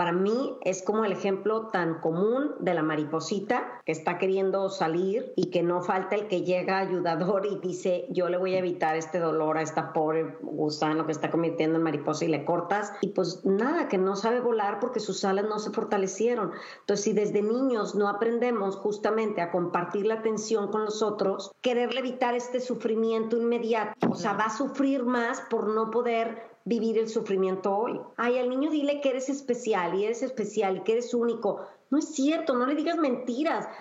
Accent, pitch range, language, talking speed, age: Mexican, 190-255 Hz, Spanish, 195 wpm, 40-59